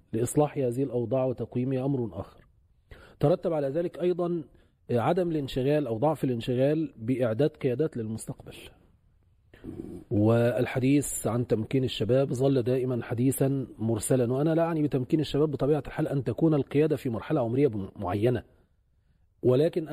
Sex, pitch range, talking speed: male, 115-155 Hz, 125 wpm